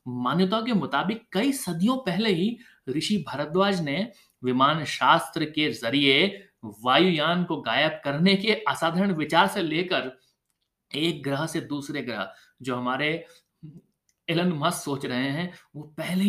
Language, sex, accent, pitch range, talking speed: Hindi, male, native, 150-210 Hz, 135 wpm